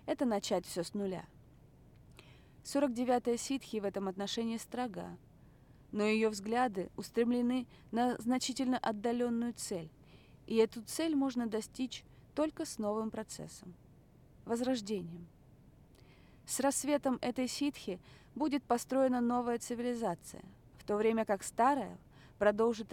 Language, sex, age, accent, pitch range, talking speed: Russian, female, 30-49, native, 205-255 Hz, 115 wpm